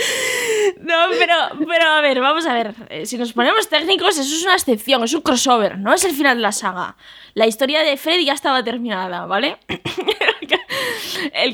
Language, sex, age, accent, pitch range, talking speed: Spanish, female, 20-39, Spanish, 225-290 Hz, 185 wpm